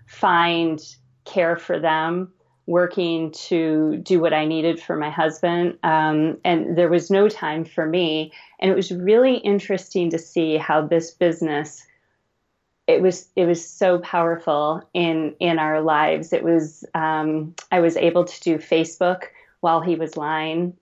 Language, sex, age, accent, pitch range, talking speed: English, female, 30-49, American, 155-175 Hz, 155 wpm